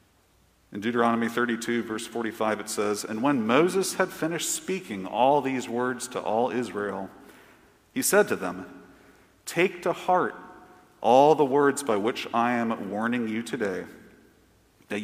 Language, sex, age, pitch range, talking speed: English, male, 40-59, 105-145 Hz, 150 wpm